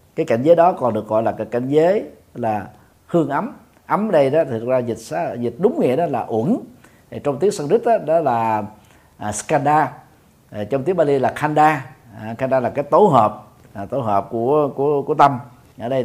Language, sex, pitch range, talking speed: Vietnamese, male, 120-175 Hz, 200 wpm